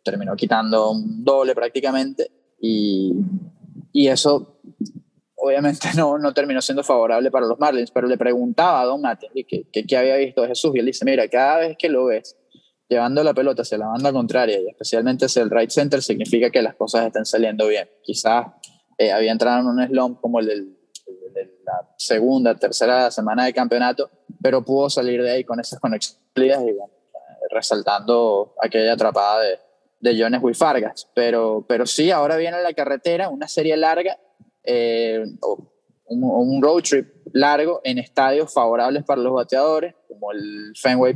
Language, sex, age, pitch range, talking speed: English, male, 20-39, 120-155 Hz, 175 wpm